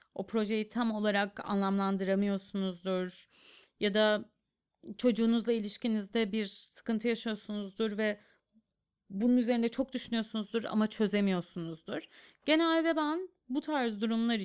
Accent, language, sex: native, Turkish, female